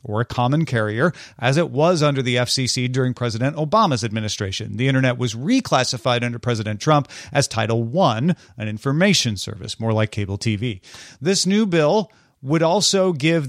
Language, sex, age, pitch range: English, male, 40-59, 120-150 Hz